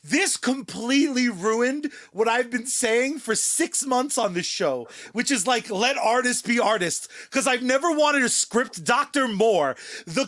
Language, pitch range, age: English, 245-310 Hz, 30-49